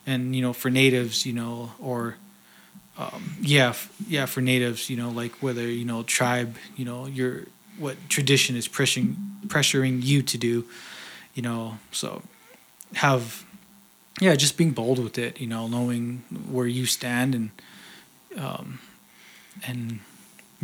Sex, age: male, 20-39